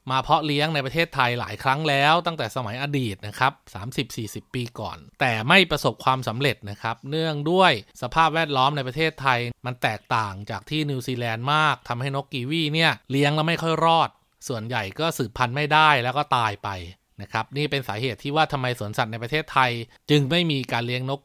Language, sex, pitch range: Thai, male, 120-155 Hz